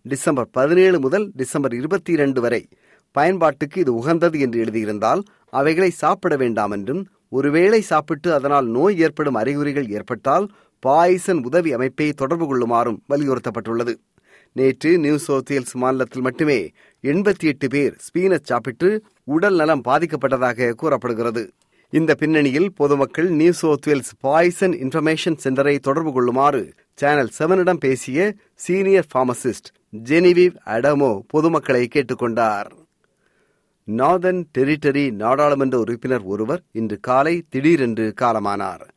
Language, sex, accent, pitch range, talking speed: Tamil, male, native, 120-165 Hz, 105 wpm